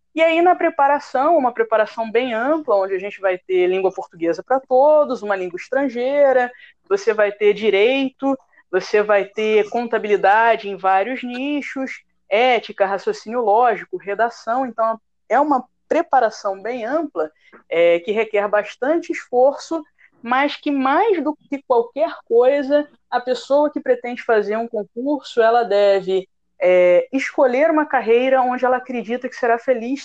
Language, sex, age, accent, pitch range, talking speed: Portuguese, female, 20-39, Brazilian, 205-265 Hz, 140 wpm